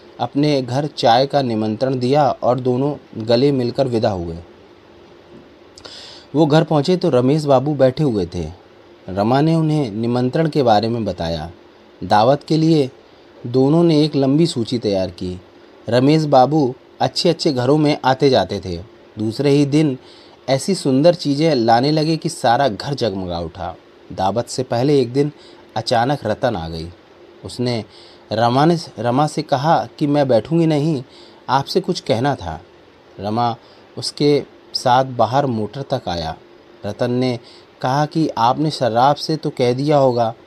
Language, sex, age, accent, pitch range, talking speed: Hindi, male, 30-49, native, 115-150 Hz, 150 wpm